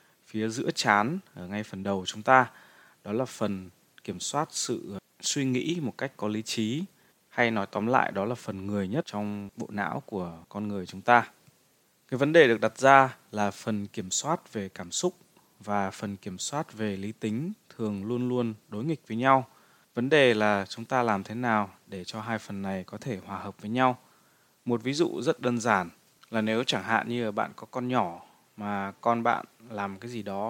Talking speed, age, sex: 210 wpm, 20-39, male